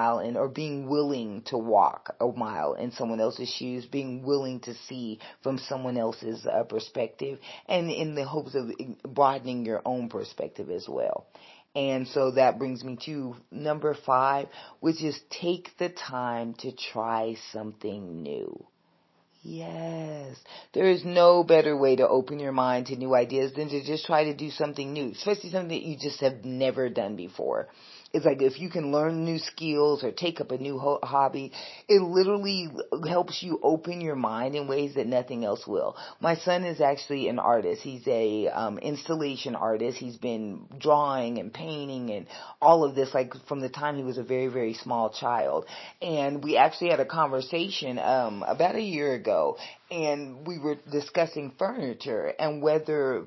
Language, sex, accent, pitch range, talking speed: English, female, American, 130-155 Hz, 175 wpm